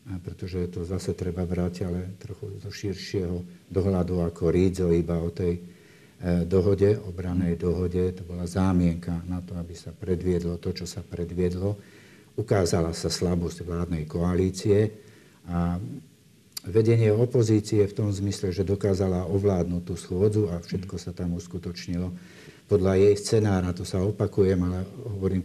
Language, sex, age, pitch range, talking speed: Slovak, male, 50-69, 85-100 Hz, 140 wpm